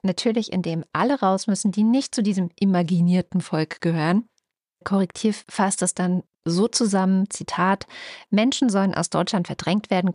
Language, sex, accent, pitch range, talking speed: German, female, German, 170-215 Hz, 150 wpm